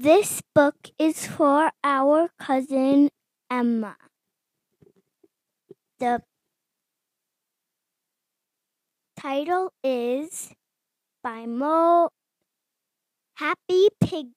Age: 10-29